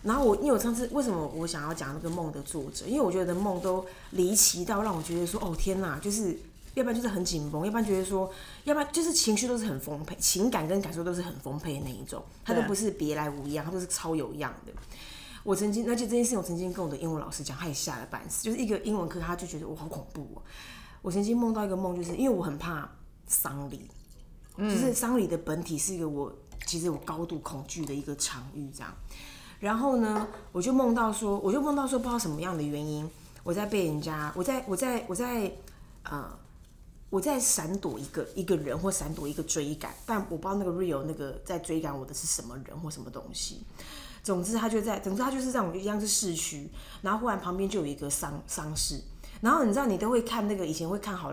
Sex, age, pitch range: female, 20-39, 155-215 Hz